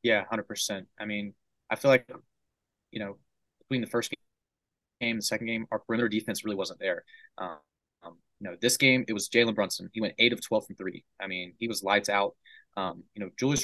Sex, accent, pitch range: male, American, 100-120 Hz